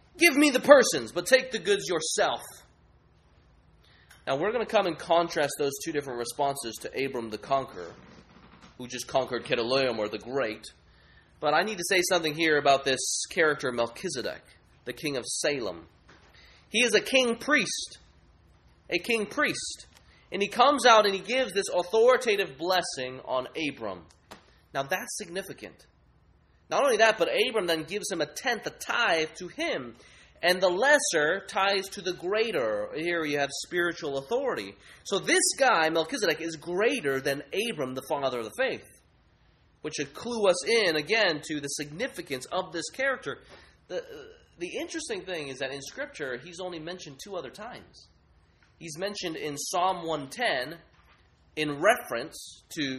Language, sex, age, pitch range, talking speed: English, male, 30-49, 125-205 Hz, 160 wpm